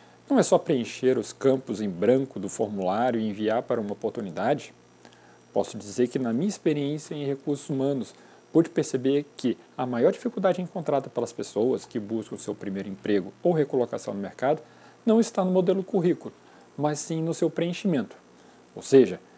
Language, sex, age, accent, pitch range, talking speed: Portuguese, male, 40-59, Brazilian, 90-145 Hz, 165 wpm